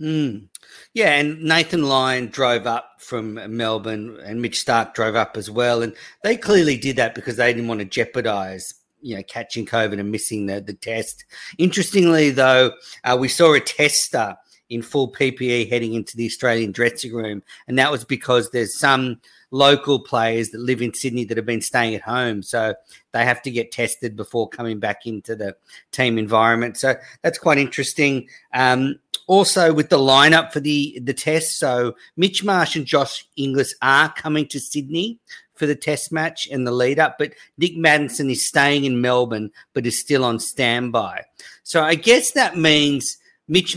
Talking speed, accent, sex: 180 wpm, Australian, male